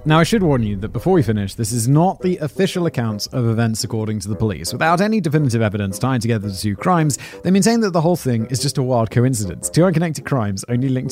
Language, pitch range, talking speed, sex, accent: English, 110-170 Hz, 255 wpm, male, British